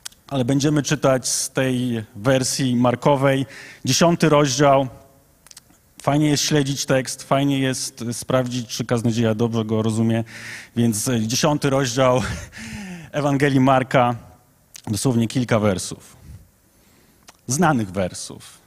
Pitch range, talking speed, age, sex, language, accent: 120-160 Hz, 105 wpm, 30-49, male, Polish, native